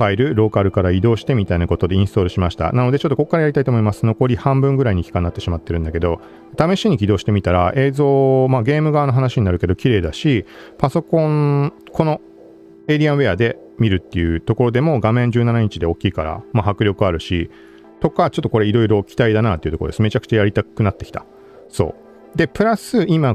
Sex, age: male, 40-59